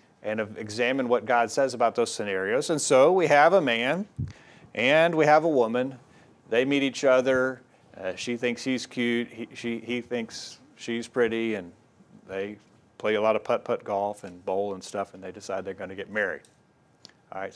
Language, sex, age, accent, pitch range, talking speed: English, male, 40-59, American, 115-145 Hz, 190 wpm